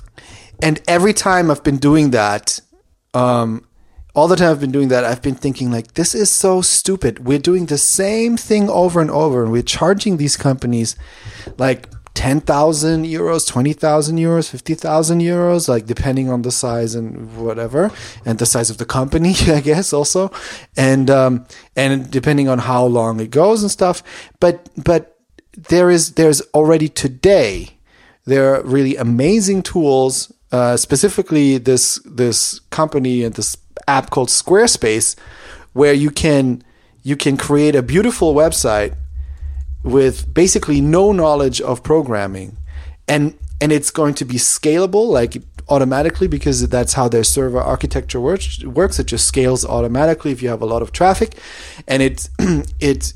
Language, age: English, 30-49